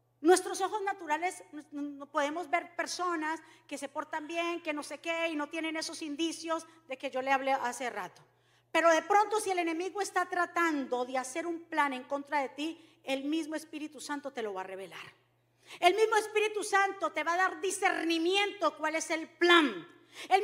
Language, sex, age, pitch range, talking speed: Spanish, female, 40-59, 275-370 Hz, 195 wpm